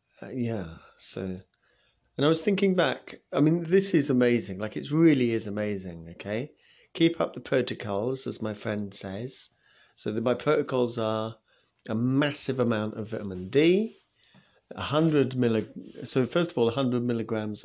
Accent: British